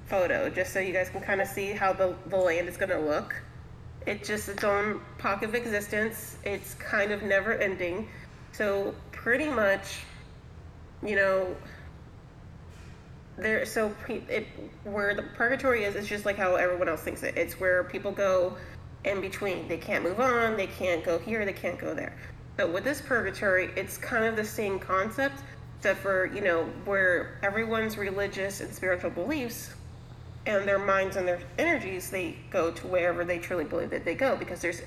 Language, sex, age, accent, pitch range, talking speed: English, female, 30-49, American, 185-210 Hz, 180 wpm